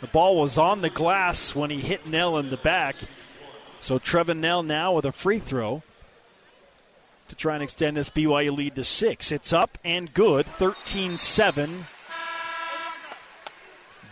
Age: 40-59